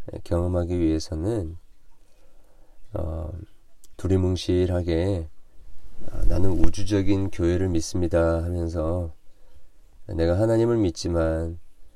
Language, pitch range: Korean, 80-100 Hz